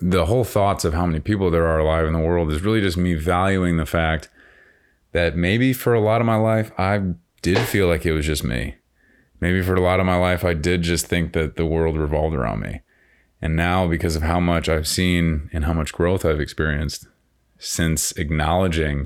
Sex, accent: male, American